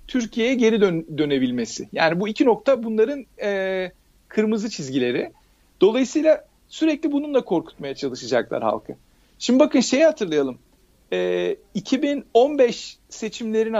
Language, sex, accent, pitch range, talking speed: Turkish, male, native, 195-260 Hz, 95 wpm